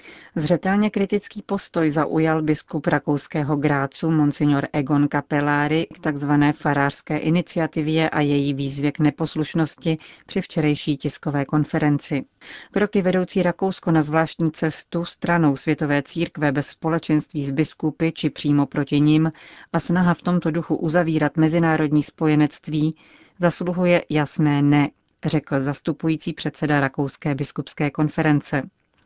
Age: 40-59